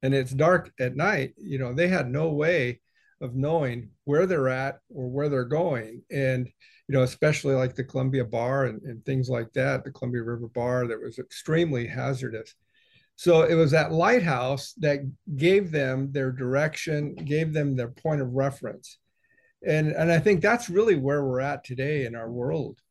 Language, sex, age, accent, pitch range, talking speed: English, male, 50-69, American, 130-165 Hz, 185 wpm